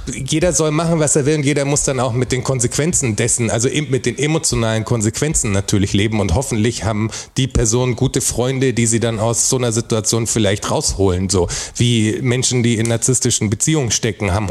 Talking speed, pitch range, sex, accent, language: 195 wpm, 110-130 Hz, male, German, German